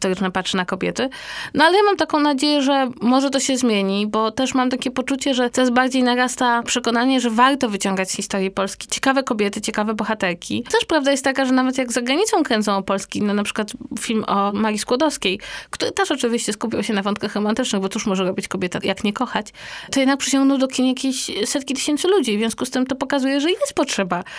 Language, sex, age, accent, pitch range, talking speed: Polish, female, 20-39, native, 205-260 Hz, 215 wpm